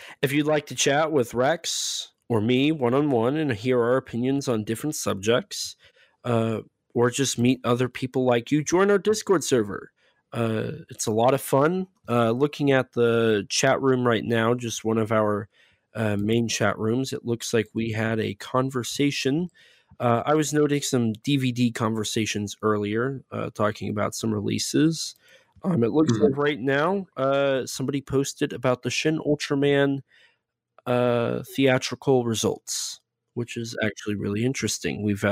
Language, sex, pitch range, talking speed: English, male, 110-140 Hz, 160 wpm